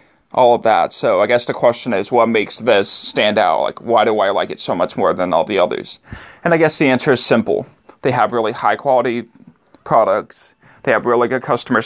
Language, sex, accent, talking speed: English, male, American, 225 wpm